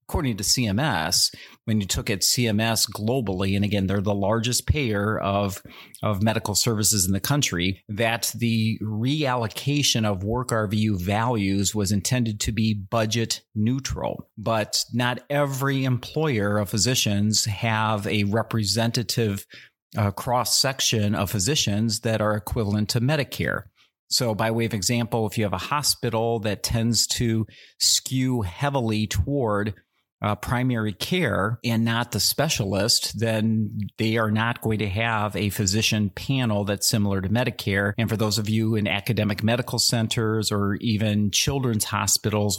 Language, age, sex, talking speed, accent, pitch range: English, 40-59, male, 145 wpm, American, 105-120 Hz